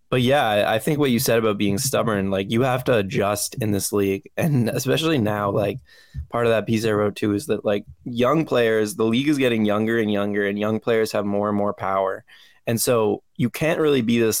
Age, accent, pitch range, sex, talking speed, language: 20-39, American, 100-115 Hz, male, 230 wpm, English